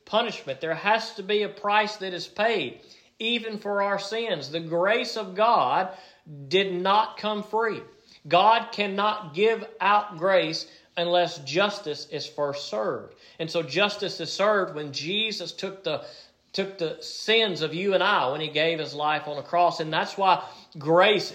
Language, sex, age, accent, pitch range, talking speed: English, male, 40-59, American, 145-190 Hz, 170 wpm